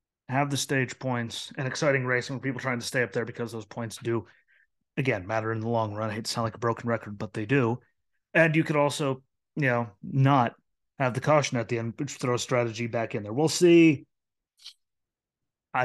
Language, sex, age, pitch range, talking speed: English, male, 30-49, 120-145 Hz, 210 wpm